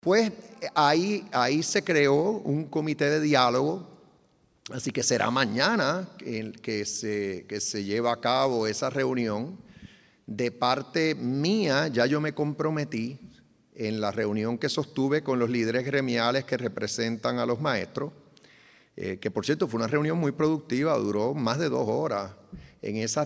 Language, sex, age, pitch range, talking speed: English, male, 30-49, 105-135 Hz, 150 wpm